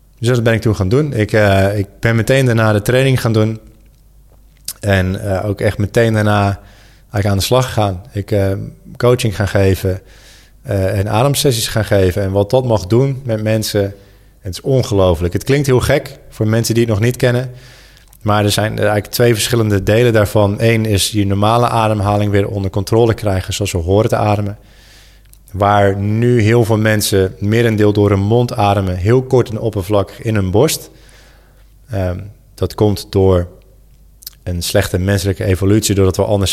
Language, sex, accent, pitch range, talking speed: Dutch, male, Dutch, 100-115 Hz, 175 wpm